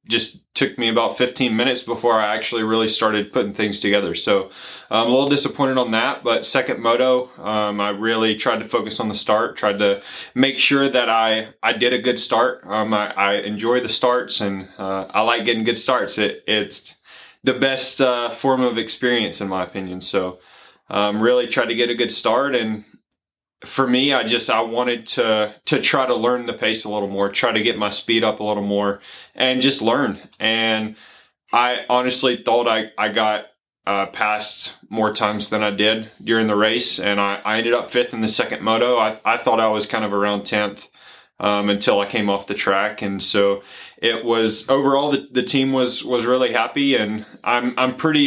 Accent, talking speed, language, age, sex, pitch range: American, 205 wpm, English, 20-39, male, 105-125 Hz